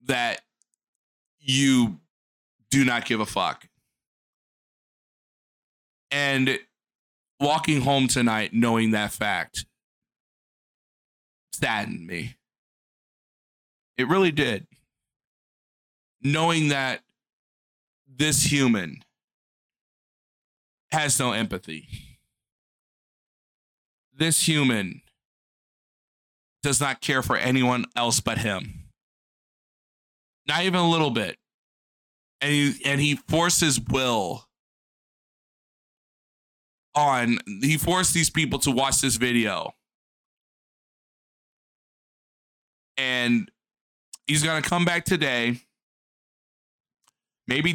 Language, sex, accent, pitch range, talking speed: English, male, American, 115-150 Hz, 80 wpm